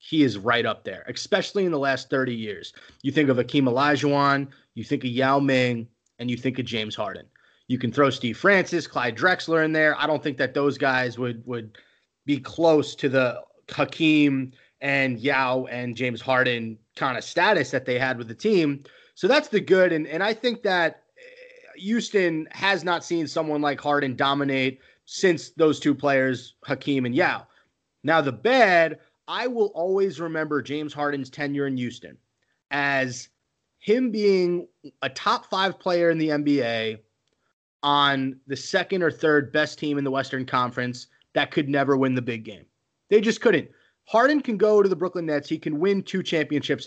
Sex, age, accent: male, 30-49, American